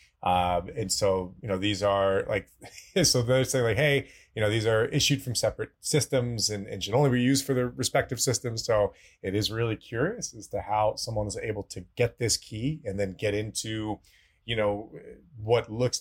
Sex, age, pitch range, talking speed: male, 30-49, 105-145 Hz, 200 wpm